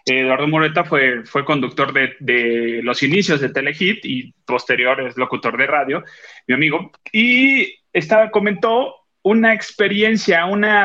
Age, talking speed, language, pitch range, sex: 30-49, 140 wpm, Spanish, 135-190 Hz, male